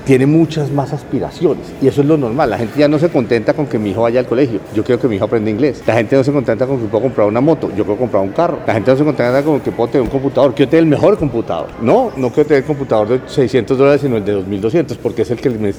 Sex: male